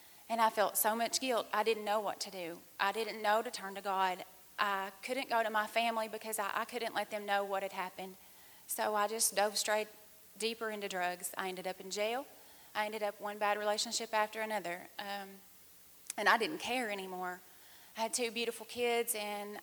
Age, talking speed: 30-49, 210 wpm